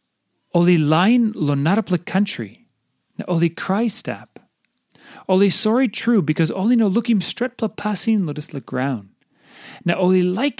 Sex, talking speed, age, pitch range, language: male, 145 wpm, 40-59, 135-195 Hz, English